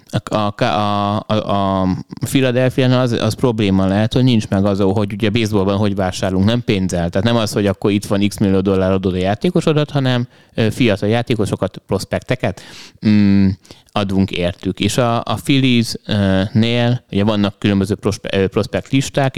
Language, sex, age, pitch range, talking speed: Hungarian, male, 30-49, 95-120 Hz, 145 wpm